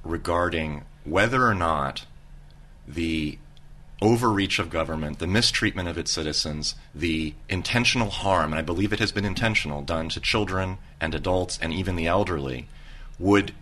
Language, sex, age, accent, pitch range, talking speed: English, male, 30-49, American, 75-100 Hz, 145 wpm